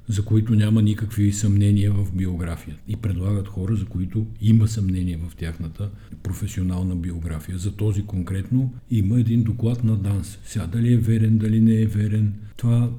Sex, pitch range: male, 95-120 Hz